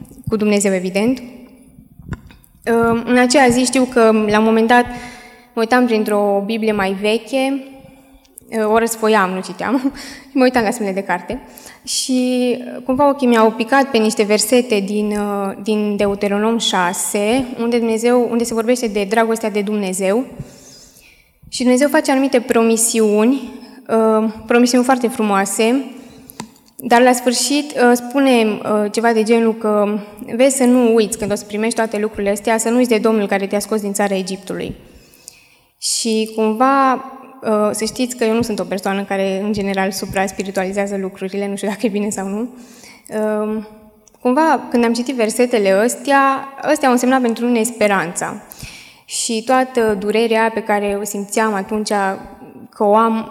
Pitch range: 210-245 Hz